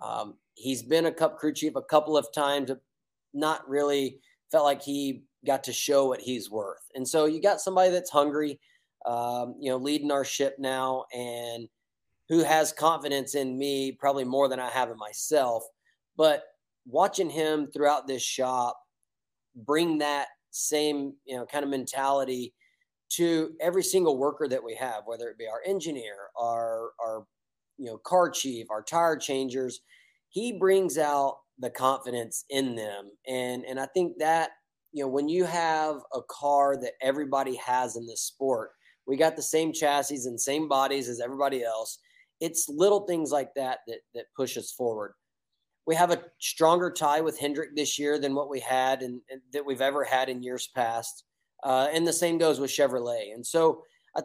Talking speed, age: 180 wpm, 30-49